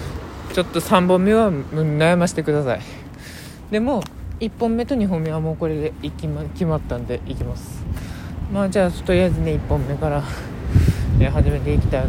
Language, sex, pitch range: Japanese, male, 120-190 Hz